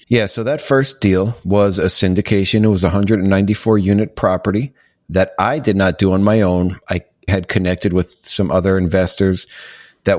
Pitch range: 85-105 Hz